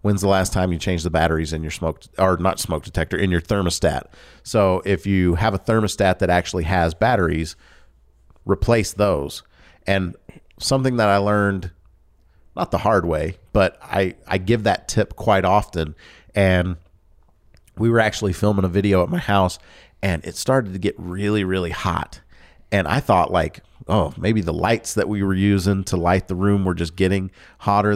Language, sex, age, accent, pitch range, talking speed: English, male, 40-59, American, 85-105 Hz, 180 wpm